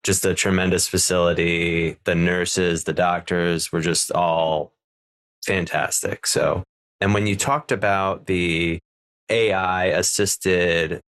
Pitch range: 90-100 Hz